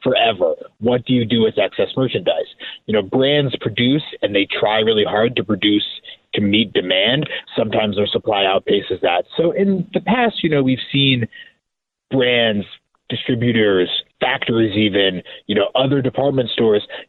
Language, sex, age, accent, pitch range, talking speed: English, male, 30-49, American, 110-145 Hz, 155 wpm